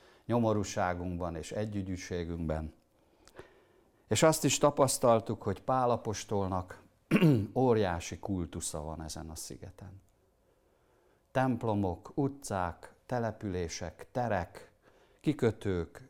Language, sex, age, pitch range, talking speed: Hungarian, male, 60-79, 85-110 Hz, 80 wpm